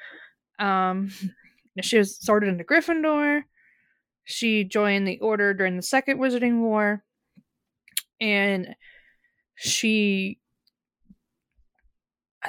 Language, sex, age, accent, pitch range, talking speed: English, female, 20-39, American, 200-250 Hz, 85 wpm